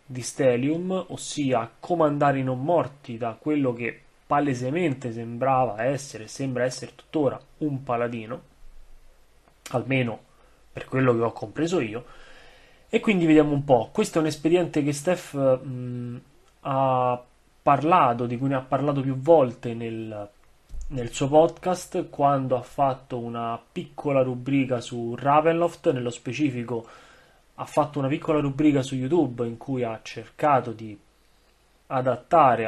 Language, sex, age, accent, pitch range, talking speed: Italian, male, 30-49, native, 120-150 Hz, 130 wpm